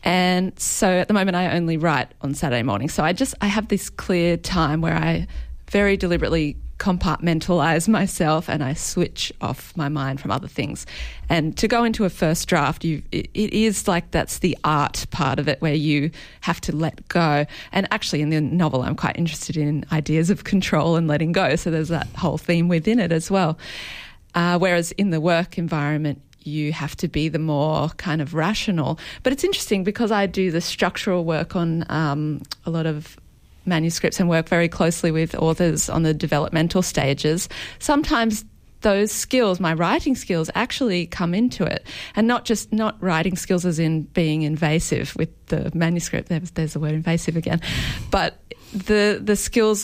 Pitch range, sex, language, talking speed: 155-190 Hz, female, English, 185 wpm